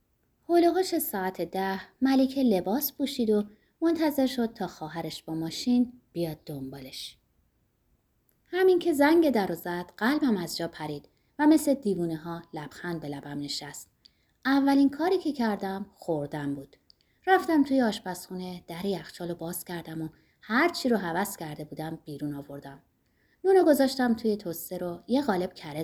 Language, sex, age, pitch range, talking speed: Persian, female, 30-49, 160-255 Hz, 140 wpm